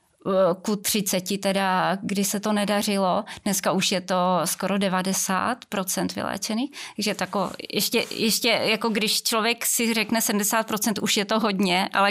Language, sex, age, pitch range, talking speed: Czech, female, 20-39, 185-215 Hz, 140 wpm